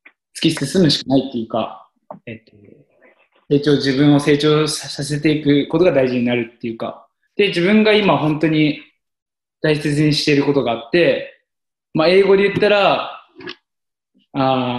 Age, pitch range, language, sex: 20-39, 130-180 Hz, Japanese, male